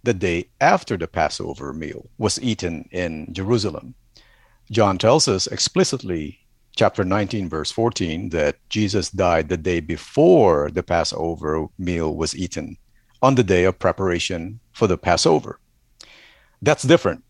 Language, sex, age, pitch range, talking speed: English, male, 50-69, 85-110 Hz, 135 wpm